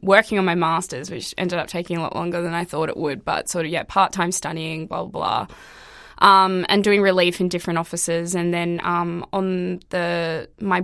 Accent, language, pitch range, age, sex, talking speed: Australian, English, 170-190 Hz, 20-39, female, 215 wpm